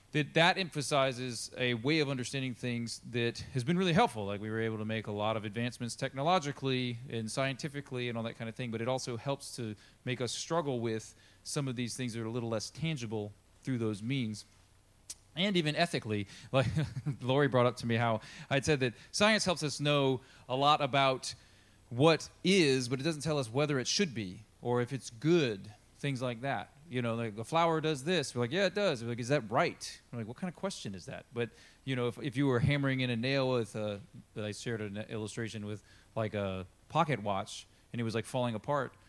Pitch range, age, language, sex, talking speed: 110-145 Hz, 30-49, English, male, 225 wpm